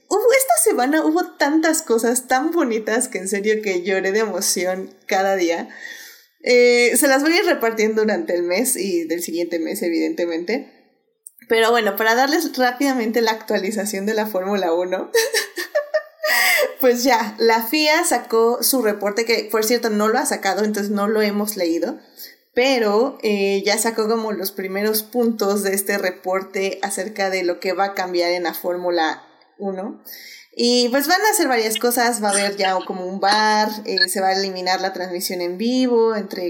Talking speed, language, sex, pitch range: 180 wpm, Spanish, female, 190-245 Hz